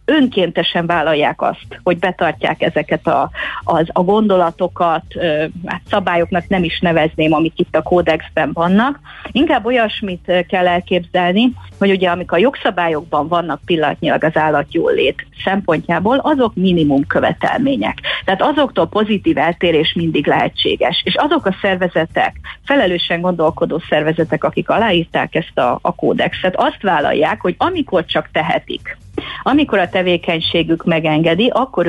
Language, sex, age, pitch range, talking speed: Hungarian, female, 30-49, 165-210 Hz, 125 wpm